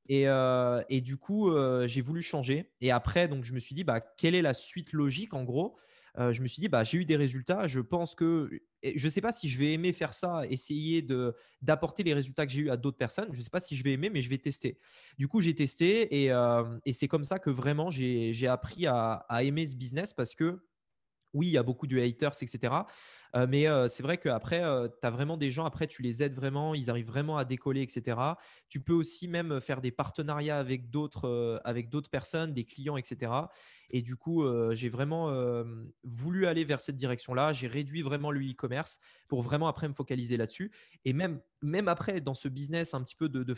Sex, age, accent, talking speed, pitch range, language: male, 20-39, French, 235 wpm, 130-160 Hz, French